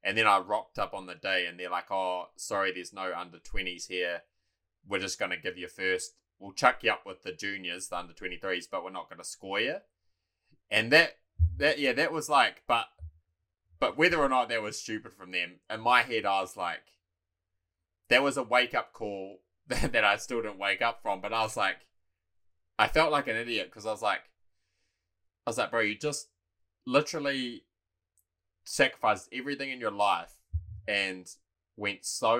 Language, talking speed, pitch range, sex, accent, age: English, 190 wpm, 90-115 Hz, male, Australian, 20-39